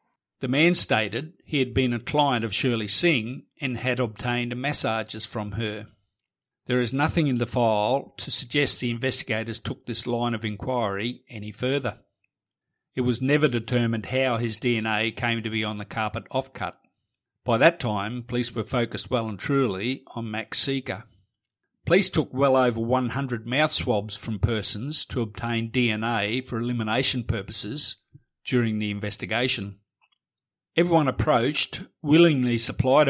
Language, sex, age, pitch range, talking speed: English, male, 50-69, 110-130 Hz, 150 wpm